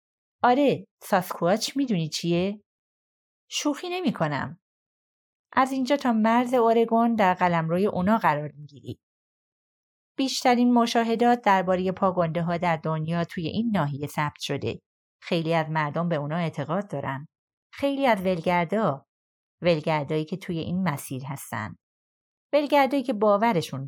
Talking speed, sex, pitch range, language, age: 120 wpm, female, 165-230 Hz, Persian, 30-49